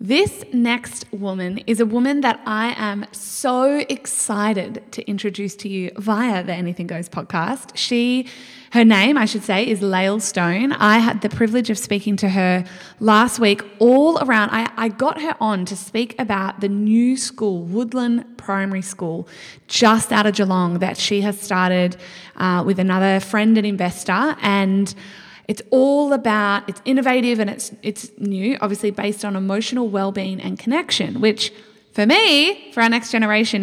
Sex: female